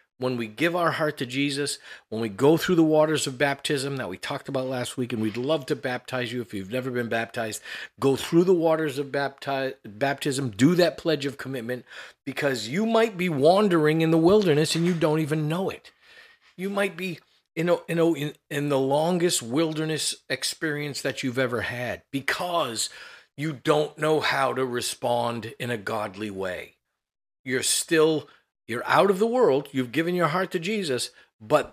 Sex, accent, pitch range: male, American, 125-160 Hz